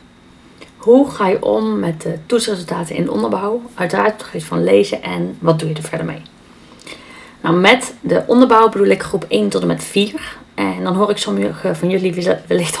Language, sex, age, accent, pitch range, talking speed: Dutch, female, 30-49, Dutch, 165-240 Hz, 195 wpm